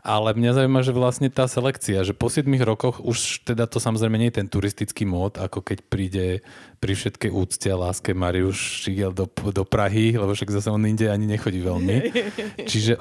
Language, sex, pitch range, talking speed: Slovak, male, 100-120 Hz, 195 wpm